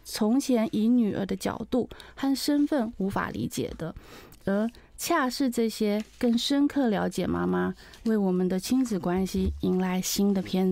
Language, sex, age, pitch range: Chinese, female, 30-49, 195-240 Hz